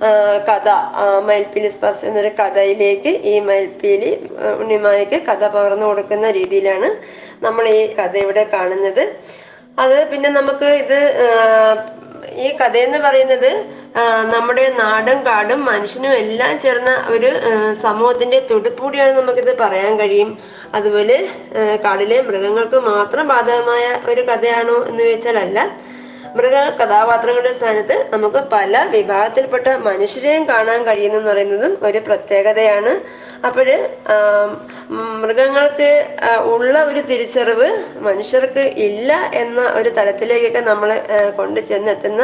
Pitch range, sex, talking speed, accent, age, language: 205-265 Hz, female, 80 wpm, native, 20-39, Malayalam